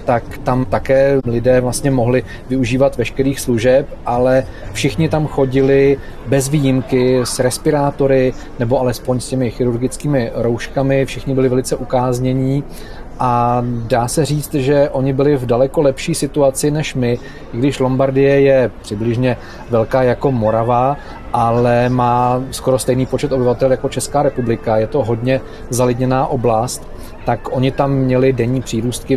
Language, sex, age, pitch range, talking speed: Czech, male, 30-49, 115-130 Hz, 140 wpm